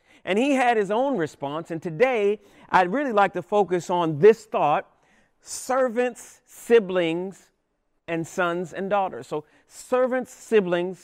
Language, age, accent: English, 40-59, American